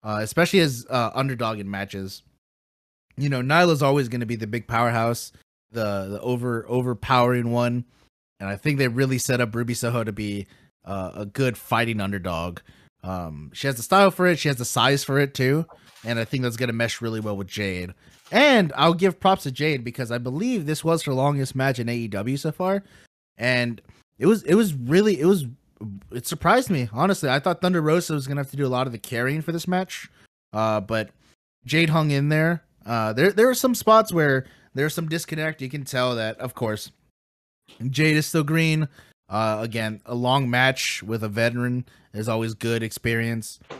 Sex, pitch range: male, 110-150 Hz